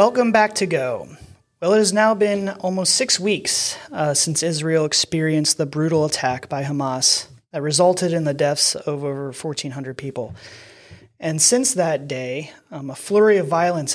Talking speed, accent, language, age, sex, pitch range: 170 wpm, American, English, 30-49, male, 145-185 Hz